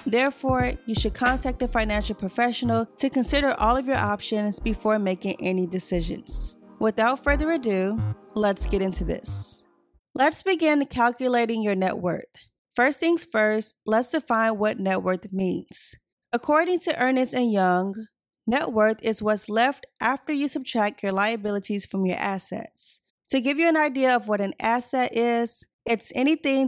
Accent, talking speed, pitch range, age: American, 155 wpm, 205-255 Hz, 20-39